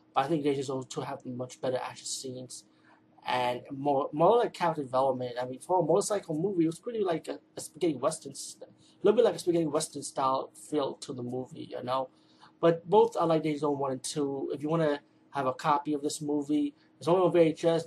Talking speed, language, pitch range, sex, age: 225 wpm, English, 130-155 Hz, male, 30-49